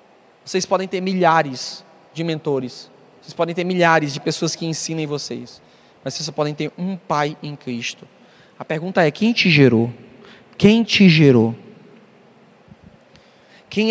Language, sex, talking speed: Portuguese, male, 145 wpm